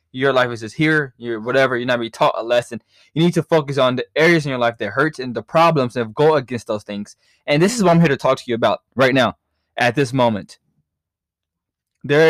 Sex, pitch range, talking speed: male, 120-155 Hz, 245 wpm